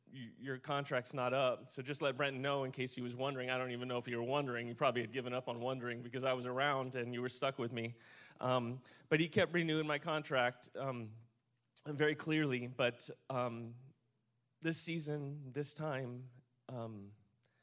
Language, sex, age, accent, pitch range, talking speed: English, male, 30-49, American, 120-140 Hz, 190 wpm